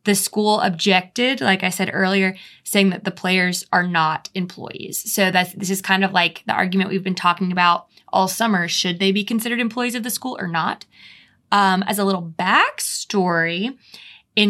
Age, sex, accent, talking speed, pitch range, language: 20-39, female, American, 185 wpm, 185-215 Hz, English